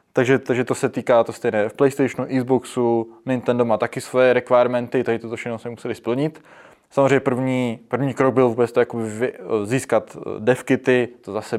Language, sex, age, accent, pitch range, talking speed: Czech, male, 20-39, native, 115-130 Hz, 170 wpm